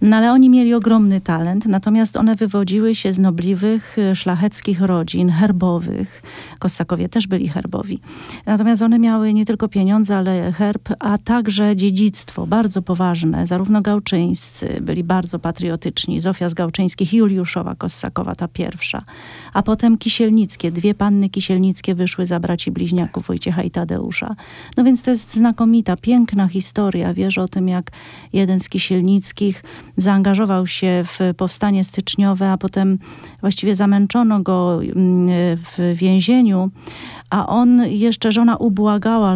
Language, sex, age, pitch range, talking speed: Polish, female, 40-59, 180-215 Hz, 135 wpm